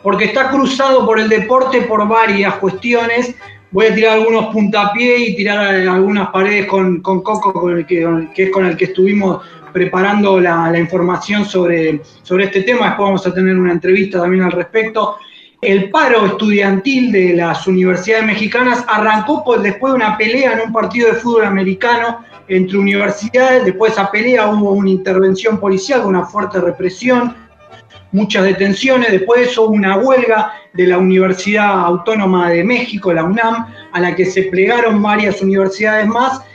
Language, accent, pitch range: Spanish, Argentinian, 185-230 Hz